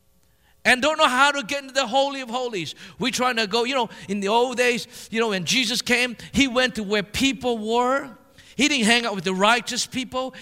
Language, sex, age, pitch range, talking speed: English, male, 50-69, 210-260 Hz, 230 wpm